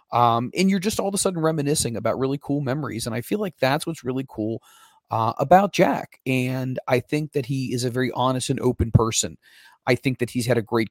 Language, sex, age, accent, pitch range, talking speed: English, male, 30-49, American, 115-135 Hz, 235 wpm